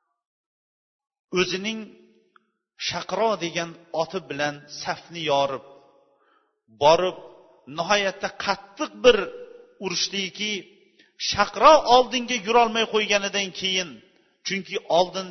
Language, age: Bulgarian, 40-59